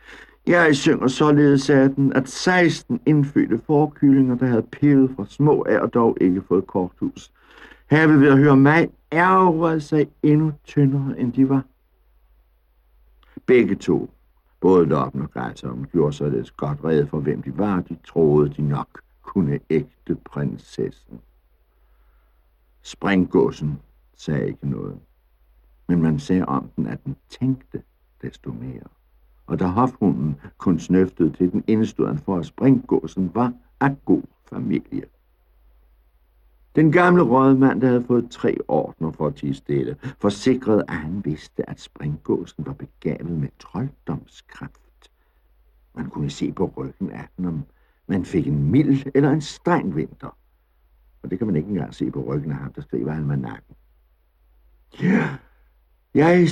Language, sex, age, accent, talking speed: Danish, male, 60-79, native, 150 wpm